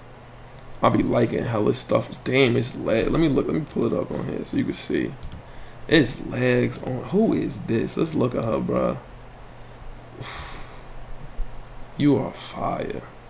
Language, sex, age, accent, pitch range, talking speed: English, male, 20-39, American, 125-145 Hz, 170 wpm